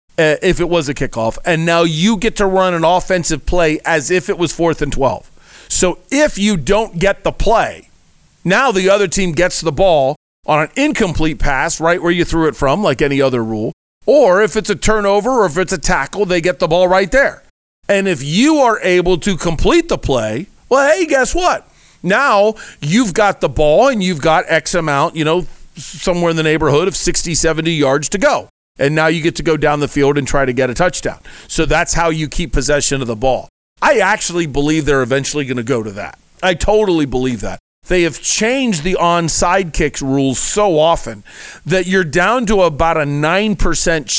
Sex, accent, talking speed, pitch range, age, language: male, American, 210 wpm, 145-190 Hz, 40-59, English